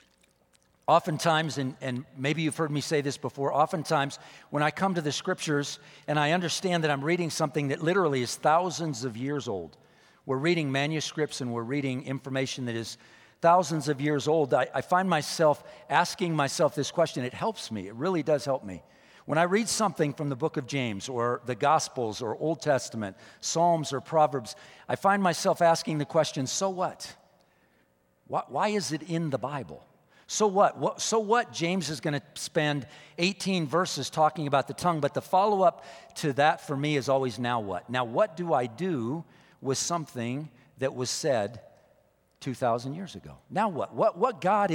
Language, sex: English, male